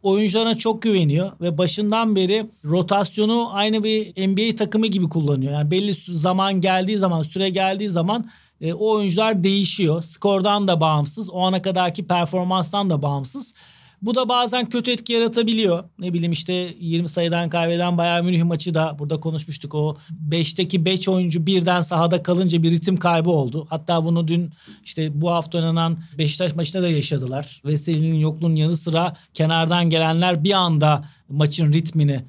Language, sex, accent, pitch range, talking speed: Turkish, male, native, 165-205 Hz, 155 wpm